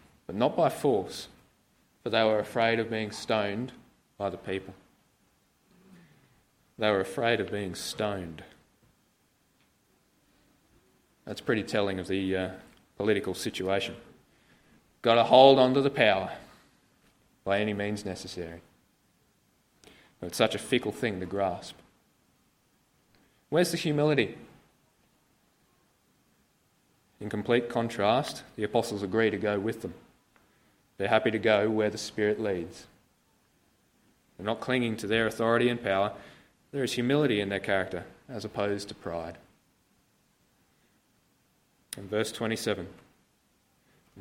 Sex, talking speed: male, 120 wpm